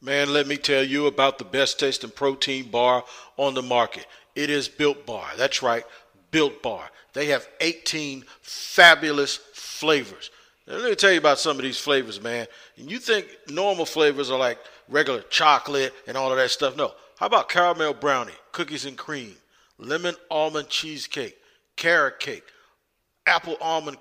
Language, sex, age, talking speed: English, male, 50-69, 160 wpm